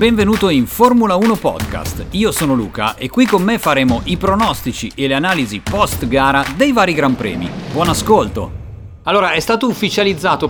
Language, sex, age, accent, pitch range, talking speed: Italian, male, 40-59, native, 145-205 Hz, 170 wpm